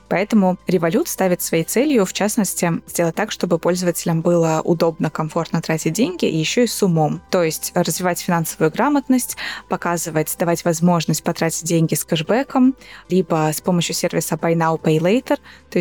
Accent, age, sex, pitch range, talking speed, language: native, 20-39, female, 165-200 Hz, 155 wpm, Russian